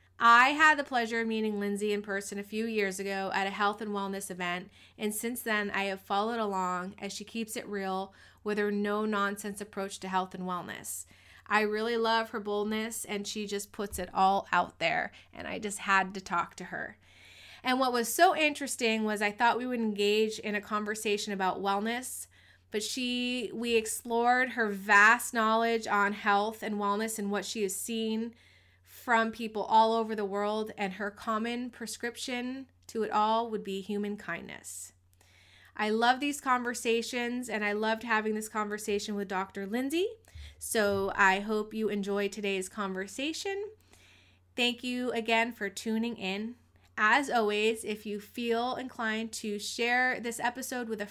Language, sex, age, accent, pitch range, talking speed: English, female, 20-39, American, 200-235 Hz, 175 wpm